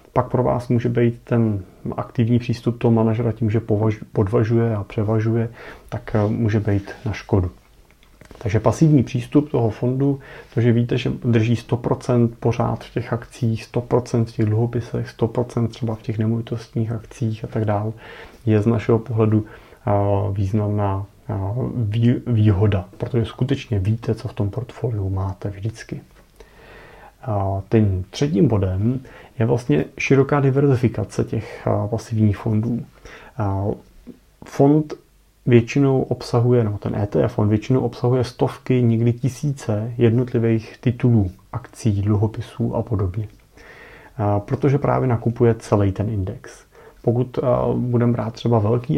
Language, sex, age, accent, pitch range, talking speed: Czech, male, 30-49, native, 110-125 Hz, 125 wpm